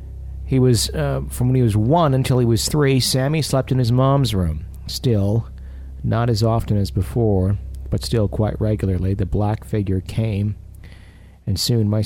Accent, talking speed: American, 175 wpm